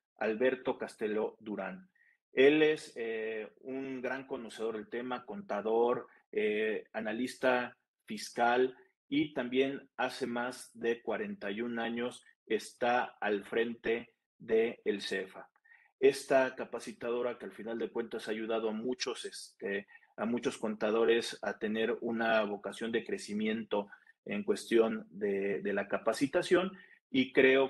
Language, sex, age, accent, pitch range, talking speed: Spanish, male, 40-59, Mexican, 110-175 Hz, 115 wpm